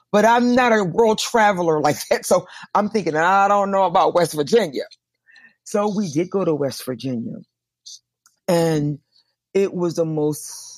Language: English